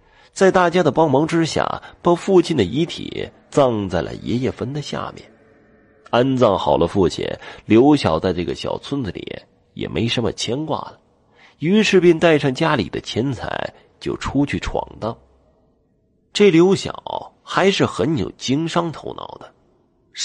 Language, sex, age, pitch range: Chinese, male, 30-49, 105-165 Hz